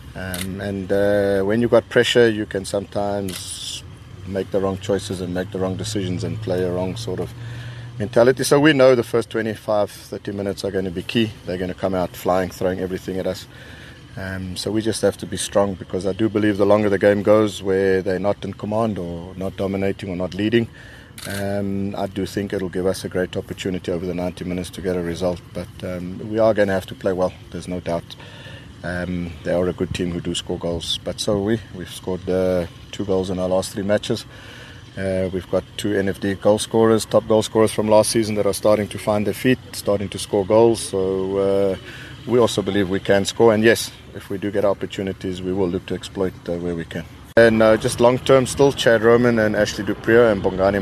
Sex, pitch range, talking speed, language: male, 95-115 Hz, 225 wpm, English